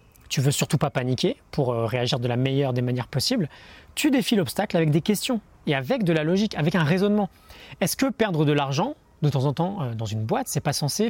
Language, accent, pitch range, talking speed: French, French, 140-195 Hz, 225 wpm